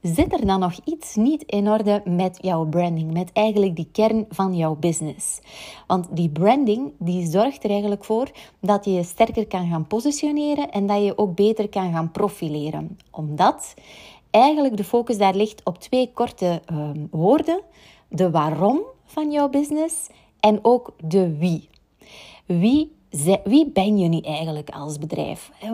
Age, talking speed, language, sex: 30-49, 165 wpm, Dutch, female